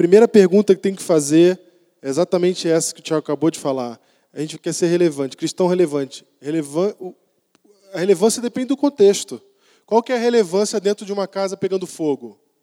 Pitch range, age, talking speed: 165-205 Hz, 20-39, 180 wpm